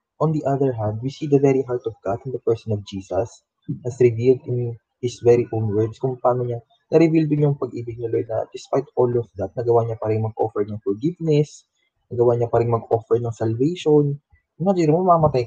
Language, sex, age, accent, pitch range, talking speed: Filipino, male, 20-39, native, 115-150 Hz, 215 wpm